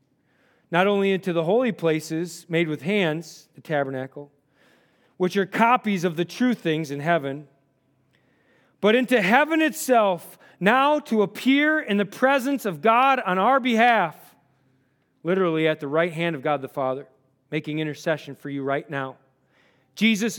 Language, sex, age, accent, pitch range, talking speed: English, male, 40-59, American, 150-220 Hz, 150 wpm